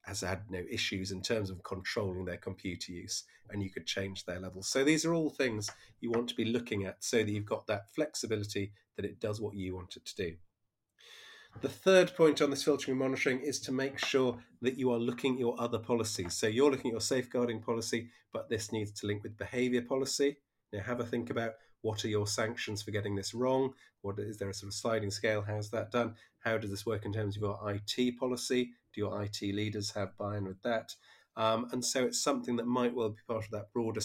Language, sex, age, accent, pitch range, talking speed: English, male, 30-49, British, 100-120 Hz, 235 wpm